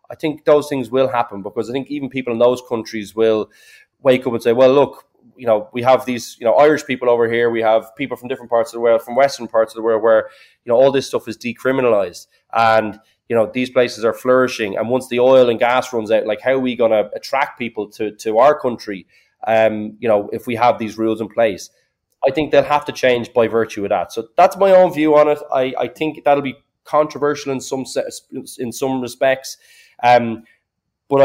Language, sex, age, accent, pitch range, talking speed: English, male, 20-39, Irish, 110-135 Hz, 235 wpm